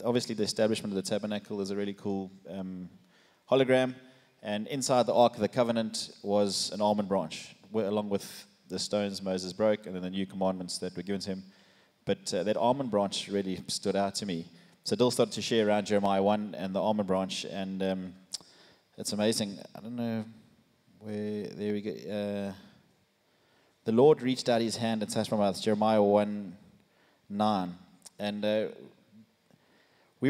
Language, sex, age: English, male, 20-39